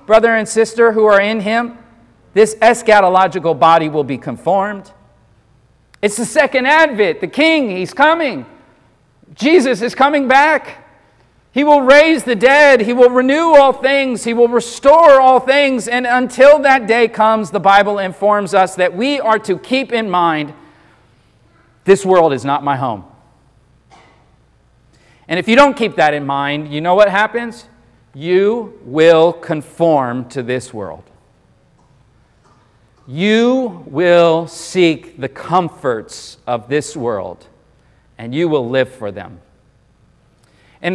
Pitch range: 155-235 Hz